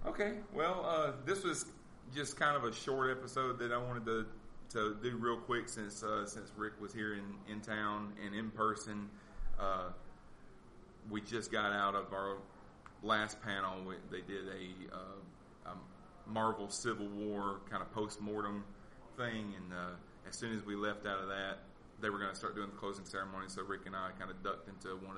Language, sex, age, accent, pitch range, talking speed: English, male, 30-49, American, 95-115 Hz, 195 wpm